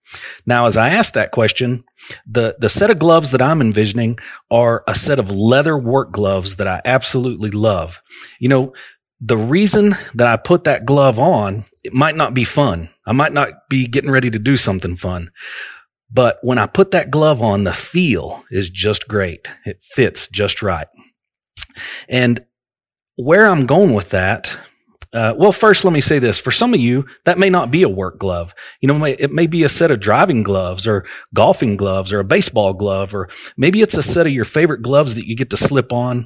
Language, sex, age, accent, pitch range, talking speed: English, male, 40-59, American, 105-150 Hz, 205 wpm